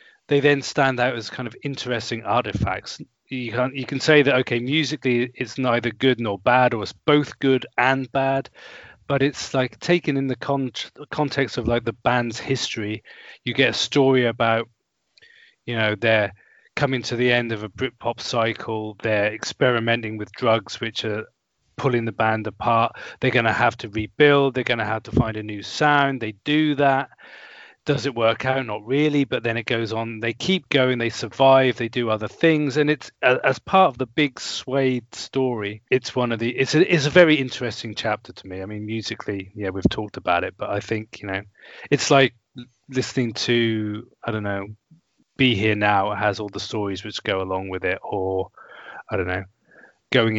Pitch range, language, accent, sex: 110-135 Hz, English, British, male